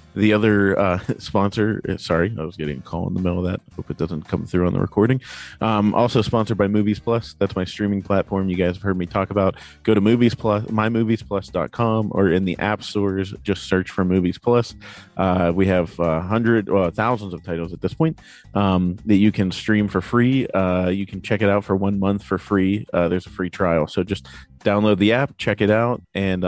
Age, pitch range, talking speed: 30-49, 90-105 Hz, 230 wpm